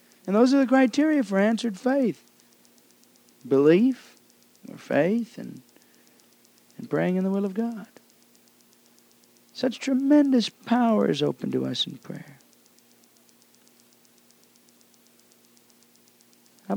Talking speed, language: 105 wpm, English